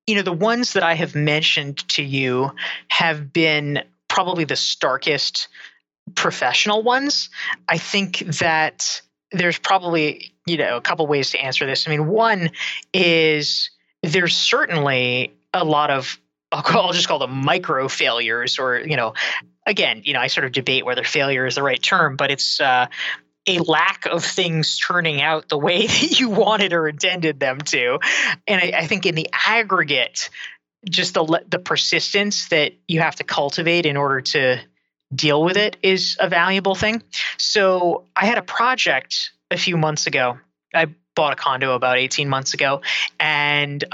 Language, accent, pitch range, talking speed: English, American, 140-185 Hz, 170 wpm